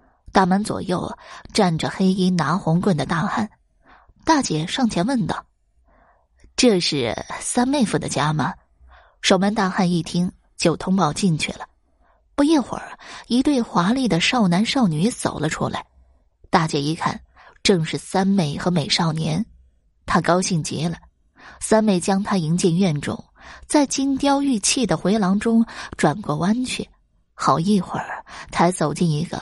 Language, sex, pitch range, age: Chinese, female, 155-215 Hz, 20-39